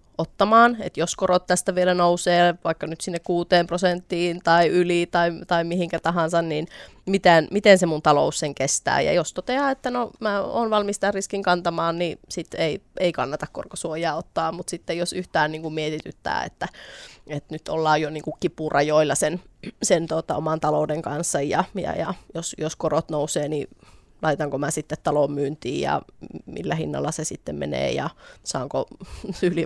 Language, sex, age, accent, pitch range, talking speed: Finnish, female, 20-39, native, 155-185 Hz, 175 wpm